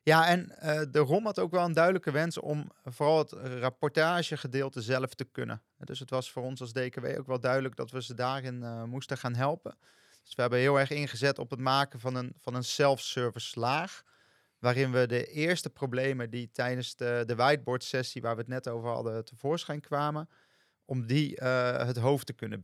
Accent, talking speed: Dutch, 205 wpm